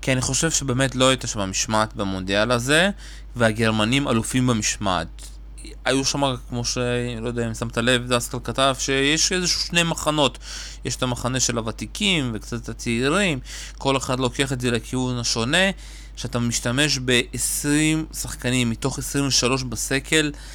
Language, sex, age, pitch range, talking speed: Hebrew, male, 20-39, 120-135 Hz, 140 wpm